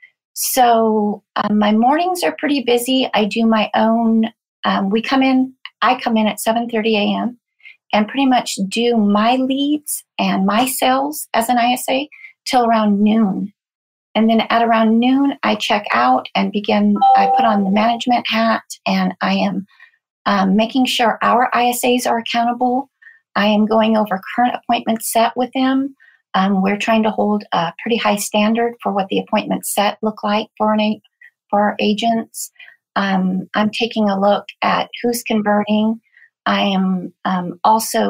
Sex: female